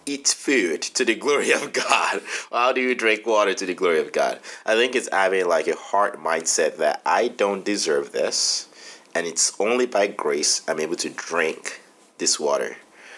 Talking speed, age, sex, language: 185 wpm, 30-49, male, English